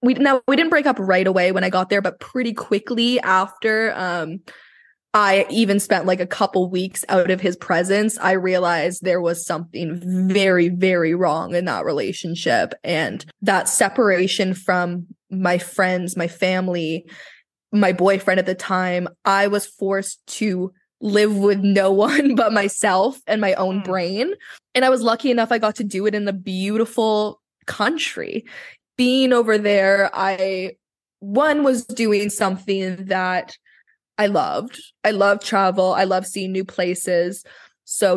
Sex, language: female, English